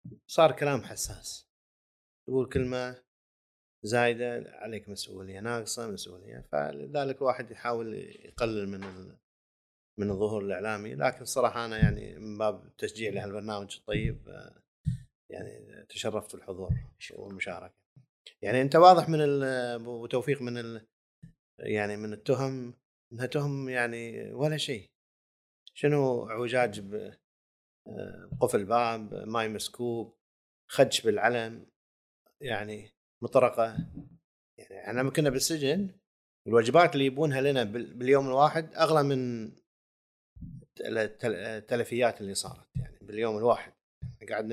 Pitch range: 100-130 Hz